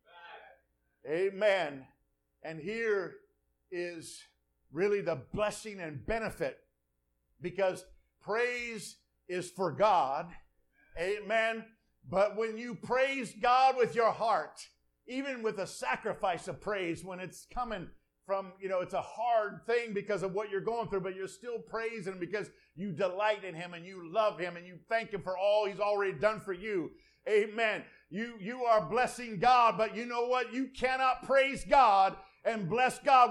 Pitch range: 200-270 Hz